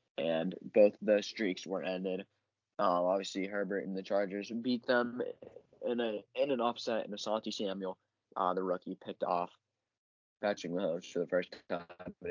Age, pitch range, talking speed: 20-39, 95-125 Hz, 170 wpm